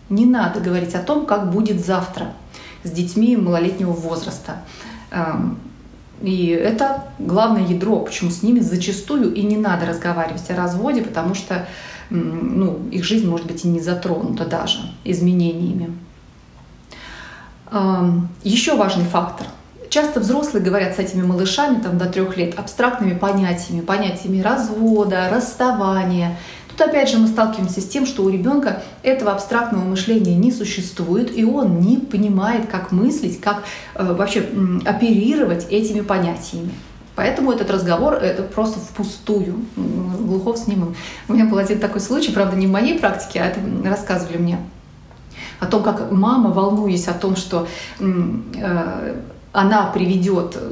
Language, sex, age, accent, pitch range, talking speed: Russian, female, 30-49, native, 185-220 Hz, 140 wpm